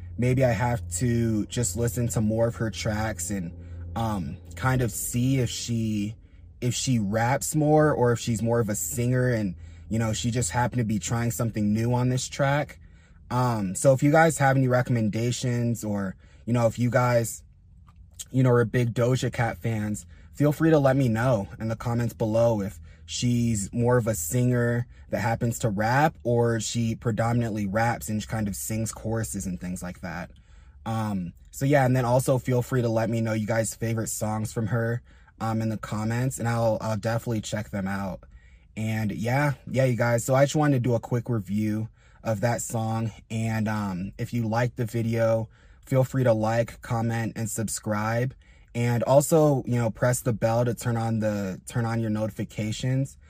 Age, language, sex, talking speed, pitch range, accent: 20-39, English, male, 195 wpm, 105-120 Hz, American